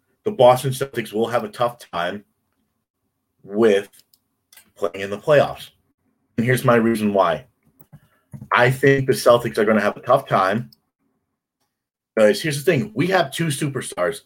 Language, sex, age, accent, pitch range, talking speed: English, male, 30-49, American, 115-165 Hz, 155 wpm